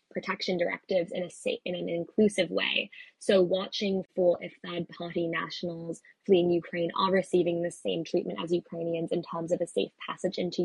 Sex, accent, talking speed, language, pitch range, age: female, American, 175 wpm, English, 175-200 Hz, 10-29